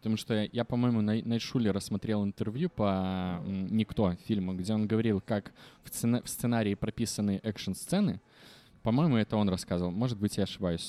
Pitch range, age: 100-120 Hz, 20-39